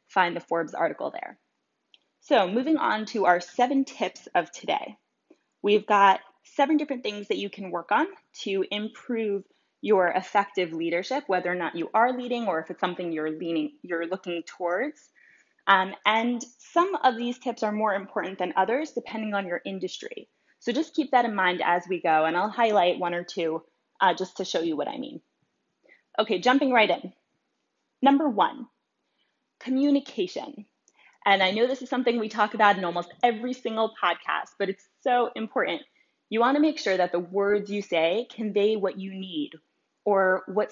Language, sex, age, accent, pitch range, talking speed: English, female, 20-39, American, 185-245 Hz, 180 wpm